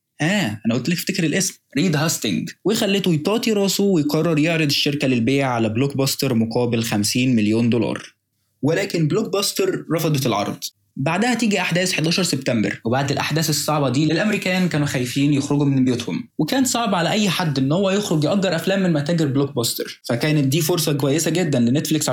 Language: Arabic